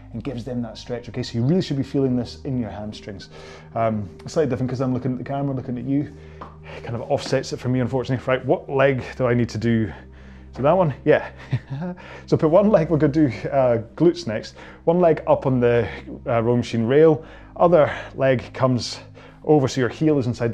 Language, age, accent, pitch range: English, 30-49, British, 115-140 Hz